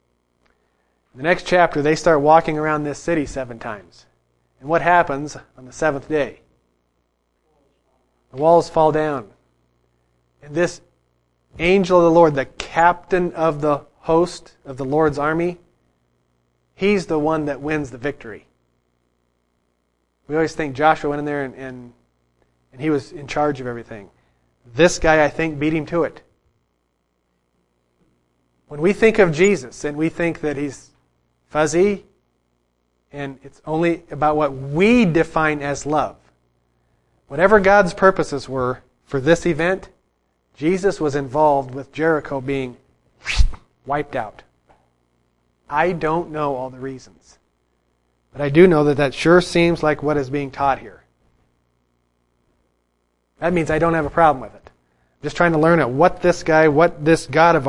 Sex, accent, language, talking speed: male, American, English, 150 wpm